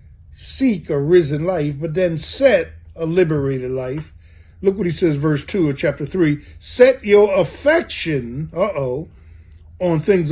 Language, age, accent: English, 50-69, American